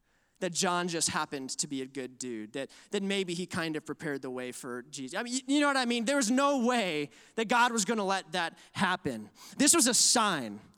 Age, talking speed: 20-39, 235 wpm